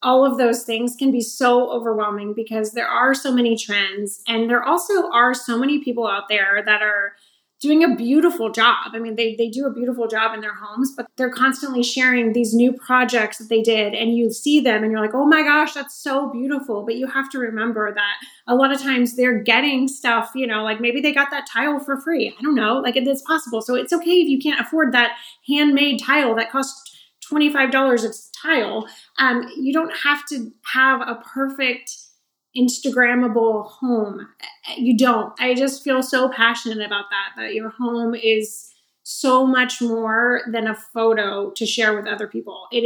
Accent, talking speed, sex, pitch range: American, 195 wpm, female, 225-270 Hz